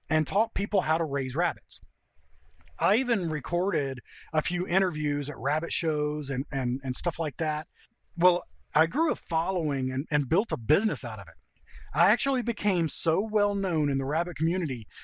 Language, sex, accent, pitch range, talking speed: English, male, American, 135-180 Hz, 180 wpm